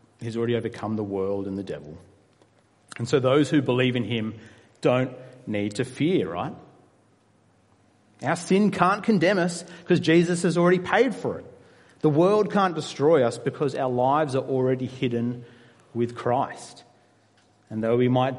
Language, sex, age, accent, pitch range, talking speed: English, male, 30-49, Australian, 110-140 Hz, 160 wpm